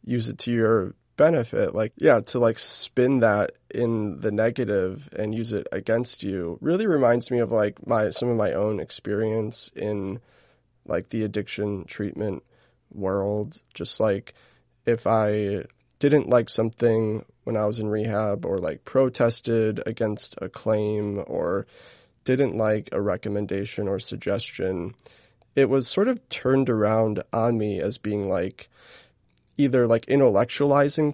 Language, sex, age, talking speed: English, male, 20-39, 145 wpm